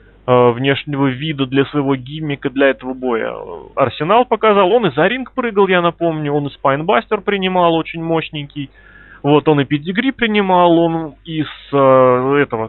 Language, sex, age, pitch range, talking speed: Russian, male, 20-39, 125-165 Hz, 145 wpm